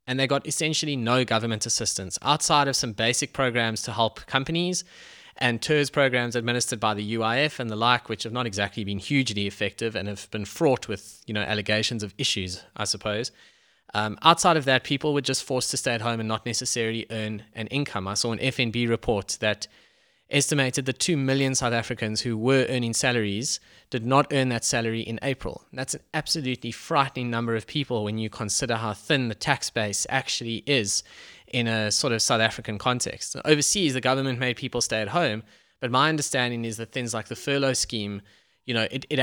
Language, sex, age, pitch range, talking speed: English, male, 20-39, 110-135 Hz, 200 wpm